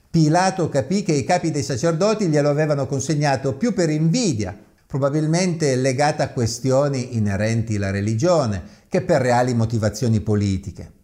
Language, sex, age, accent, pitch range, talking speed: Italian, male, 50-69, native, 105-155 Hz, 135 wpm